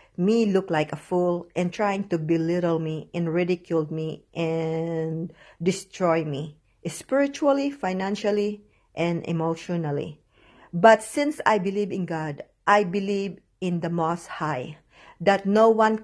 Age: 50-69